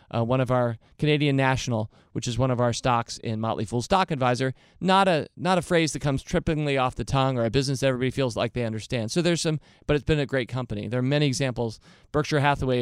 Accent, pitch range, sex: American, 120-145 Hz, male